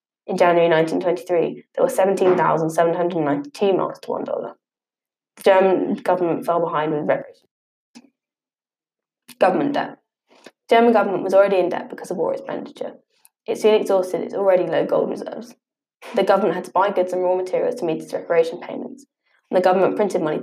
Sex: female